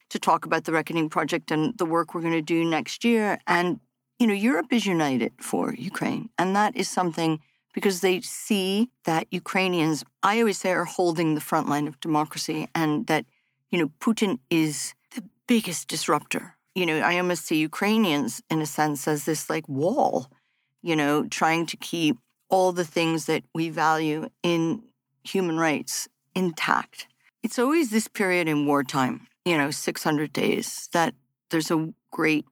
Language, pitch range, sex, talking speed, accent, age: Ukrainian, 150-190 Hz, female, 170 wpm, American, 50-69